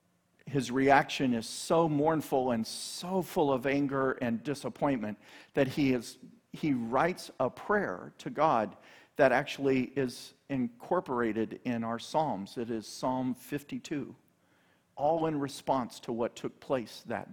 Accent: American